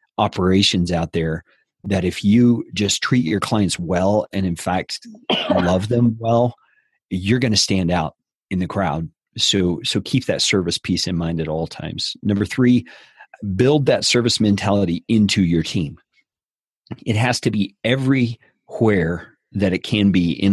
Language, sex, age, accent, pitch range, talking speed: English, male, 40-59, American, 85-110 Hz, 160 wpm